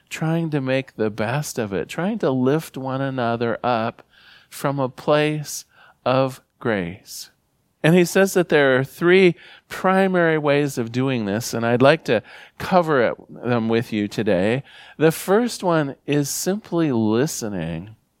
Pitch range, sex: 120-160 Hz, male